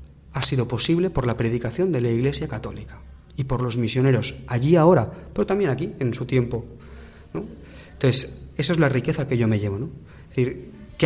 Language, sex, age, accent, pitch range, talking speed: Spanish, male, 40-59, Spanish, 115-145 Hz, 195 wpm